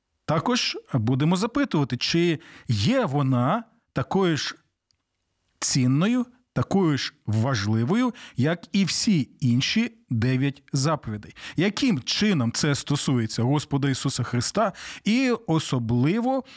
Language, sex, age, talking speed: Ukrainian, male, 40-59, 100 wpm